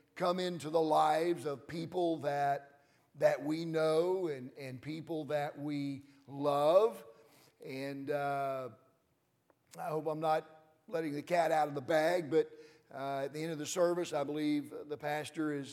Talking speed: 160 wpm